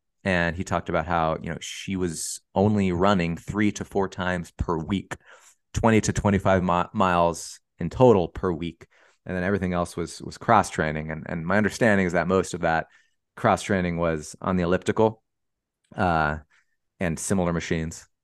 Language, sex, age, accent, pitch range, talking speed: English, male, 30-49, American, 80-95 Hz, 170 wpm